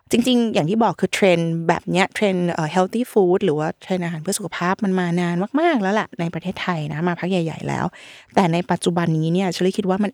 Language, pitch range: Thai, 170-220 Hz